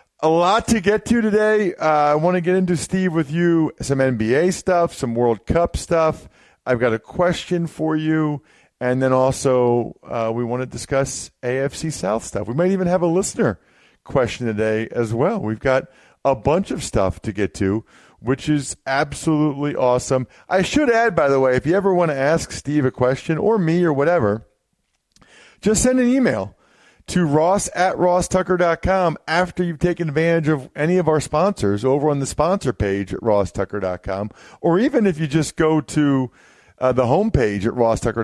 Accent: American